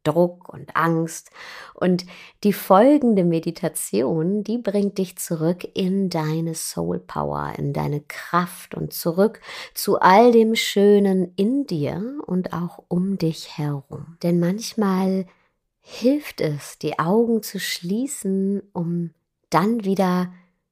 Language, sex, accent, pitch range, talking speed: German, female, German, 160-215 Hz, 120 wpm